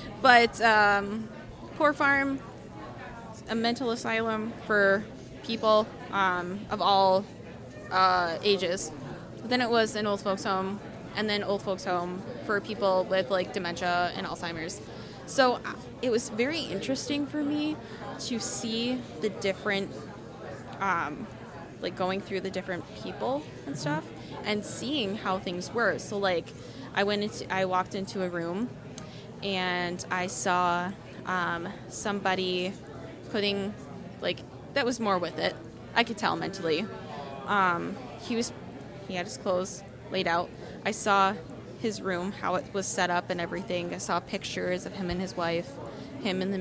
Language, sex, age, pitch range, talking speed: English, female, 20-39, 180-220 Hz, 150 wpm